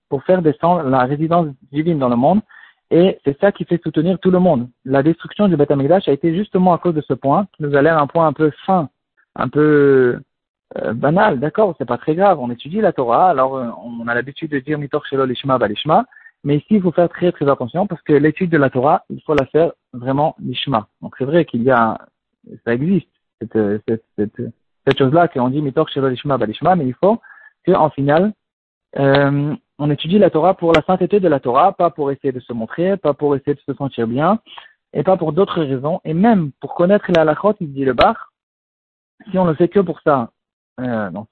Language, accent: French, French